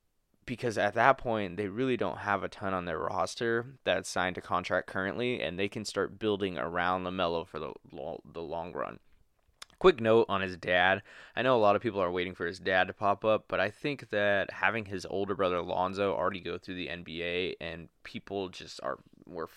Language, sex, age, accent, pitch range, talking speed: English, male, 20-39, American, 95-110 Hz, 205 wpm